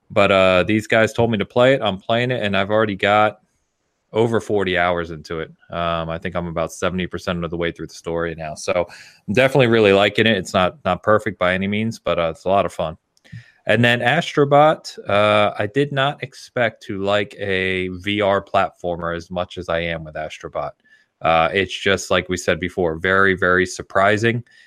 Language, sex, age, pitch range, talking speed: English, male, 30-49, 90-105 Hz, 205 wpm